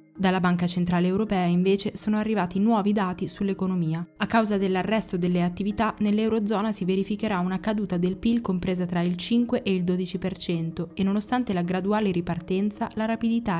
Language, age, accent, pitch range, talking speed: Italian, 20-39, native, 180-220 Hz, 160 wpm